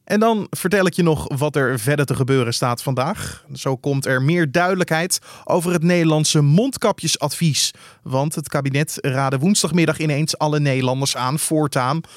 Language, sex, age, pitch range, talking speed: Dutch, male, 20-39, 135-175 Hz, 160 wpm